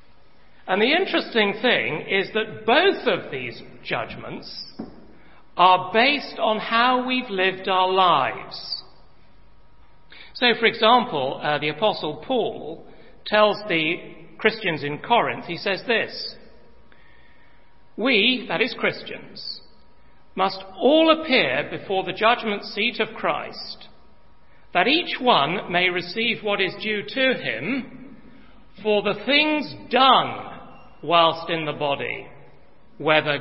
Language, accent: English, British